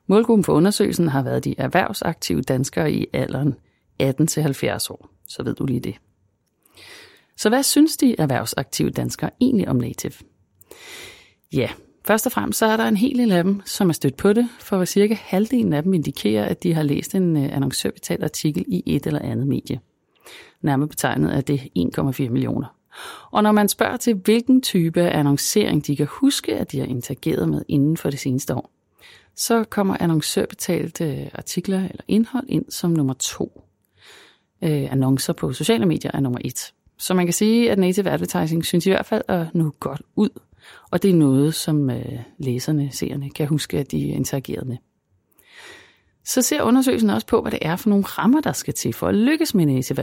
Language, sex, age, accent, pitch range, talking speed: Danish, female, 30-49, native, 140-225 Hz, 185 wpm